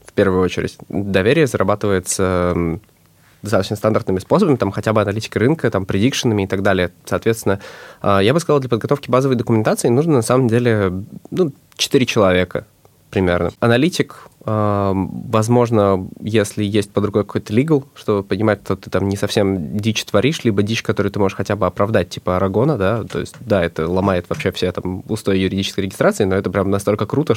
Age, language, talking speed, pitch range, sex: 20-39, English, 175 wpm, 95-120 Hz, male